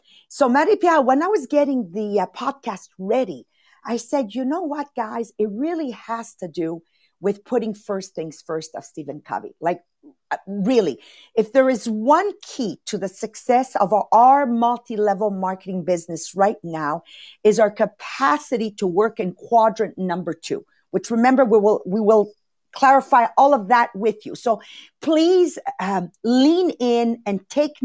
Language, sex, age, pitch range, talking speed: English, female, 50-69, 200-270 Hz, 160 wpm